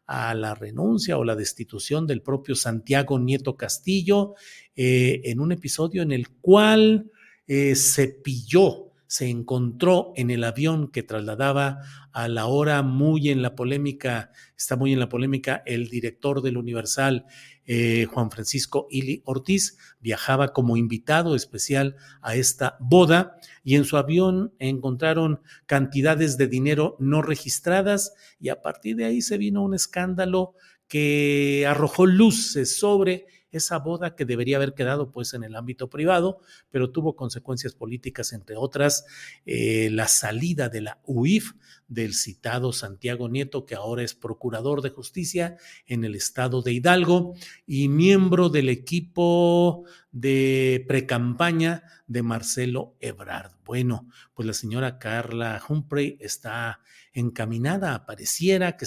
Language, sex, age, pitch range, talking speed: Spanish, male, 50-69, 120-165 Hz, 140 wpm